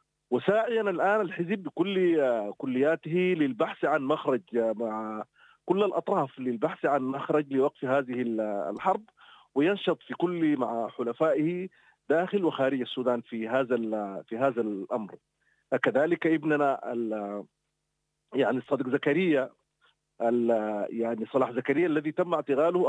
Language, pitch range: English, 120-170 Hz